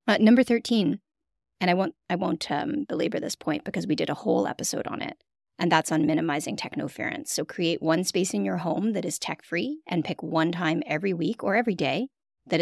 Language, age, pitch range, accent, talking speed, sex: English, 30-49, 160-225 Hz, American, 215 wpm, female